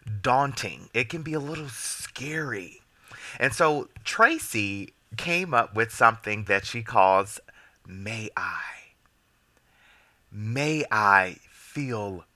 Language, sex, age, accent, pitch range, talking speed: English, male, 30-49, American, 100-125 Hz, 105 wpm